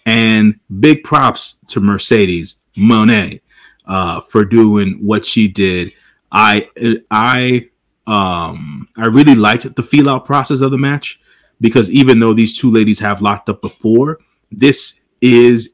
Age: 30-49